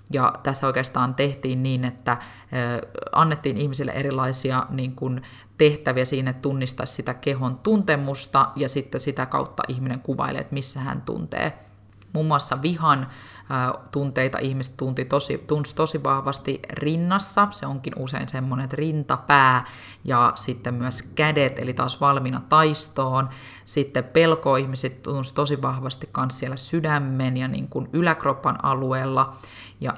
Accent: native